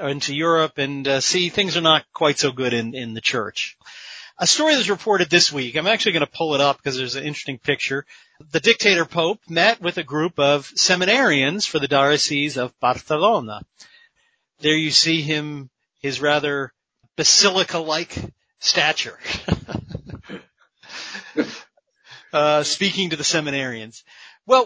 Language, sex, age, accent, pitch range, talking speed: English, male, 40-59, American, 140-190 Hz, 150 wpm